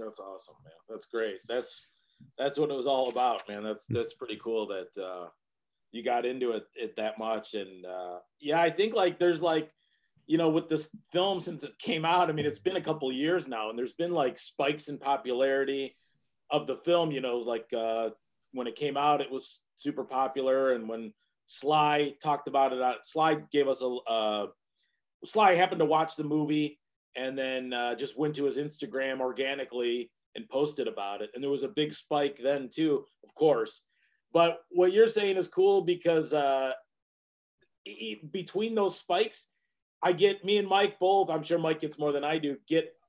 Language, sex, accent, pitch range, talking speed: English, male, American, 130-175 Hz, 195 wpm